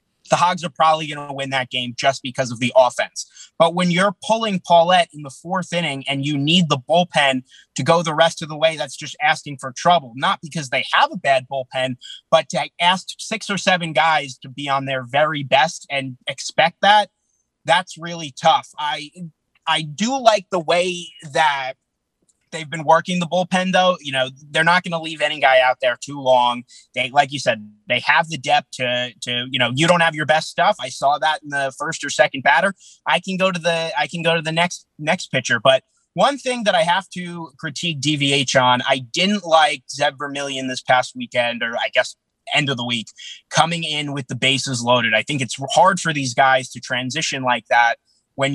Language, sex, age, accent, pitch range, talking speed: English, male, 30-49, American, 135-170 Hz, 215 wpm